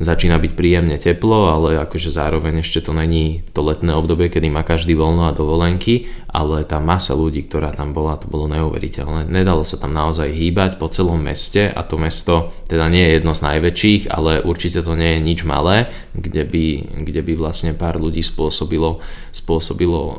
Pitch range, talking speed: 80-90 Hz, 185 wpm